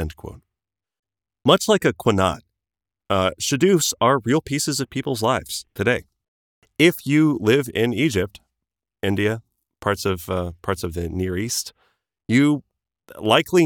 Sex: male